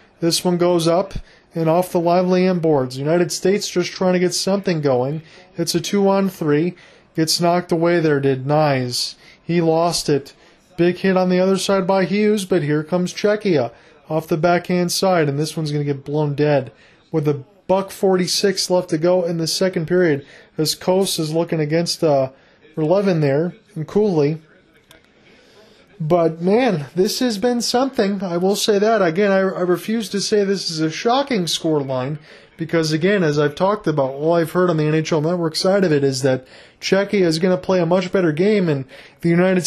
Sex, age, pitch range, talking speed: male, 30-49, 155-190 Hz, 195 wpm